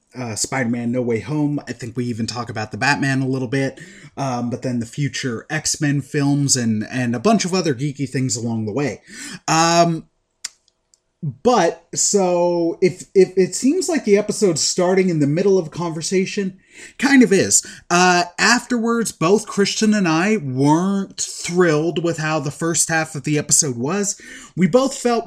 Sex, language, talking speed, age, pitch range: male, English, 175 wpm, 30-49, 140-190 Hz